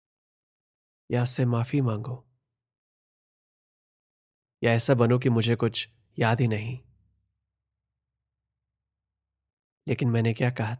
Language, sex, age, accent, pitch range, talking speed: Hindi, male, 20-39, native, 110-125 Hz, 95 wpm